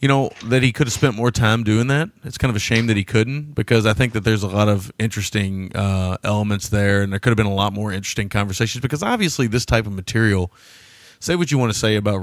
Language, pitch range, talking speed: English, 95-120 Hz, 265 wpm